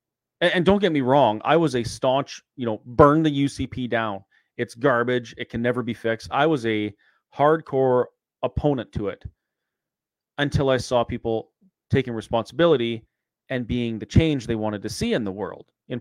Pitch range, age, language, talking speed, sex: 110-140 Hz, 30-49, English, 175 wpm, male